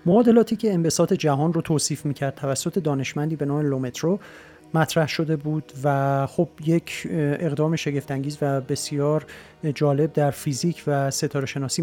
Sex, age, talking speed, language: male, 40-59, 140 wpm, Persian